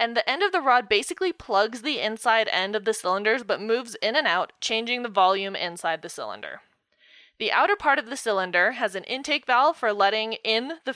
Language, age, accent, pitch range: English, 20-39, American, 200-260 Hz